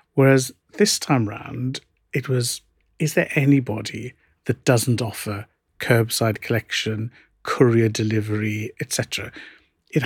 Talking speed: 105 wpm